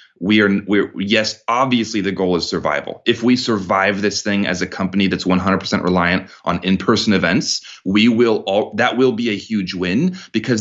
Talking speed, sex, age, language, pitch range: 190 wpm, male, 30-49, English, 90-110 Hz